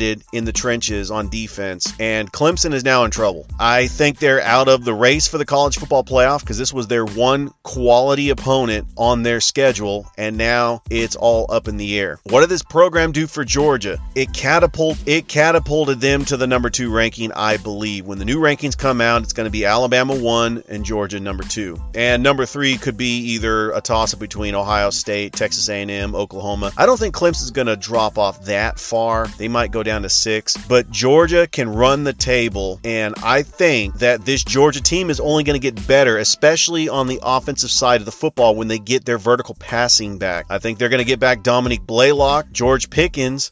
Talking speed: 210 wpm